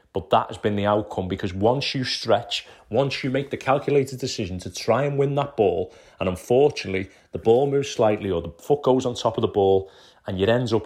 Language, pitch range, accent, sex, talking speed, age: English, 95-110 Hz, British, male, 225 wpm, 30-49